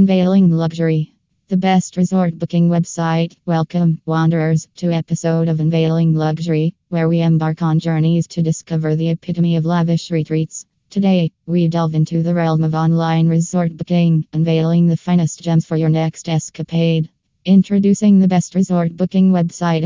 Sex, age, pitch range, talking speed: female, 20-39, 160-175 Hz, 150 wpm